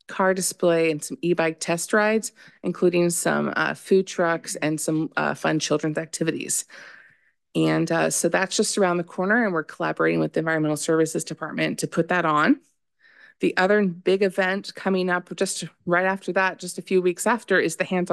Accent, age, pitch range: American, 30-49, 160-190 Hz